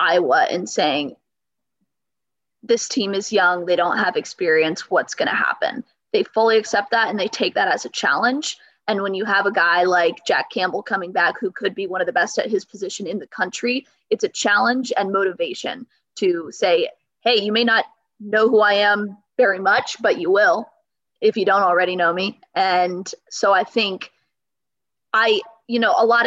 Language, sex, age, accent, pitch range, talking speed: English, female, 20-39, American, 195-260 Hz, 195 wpm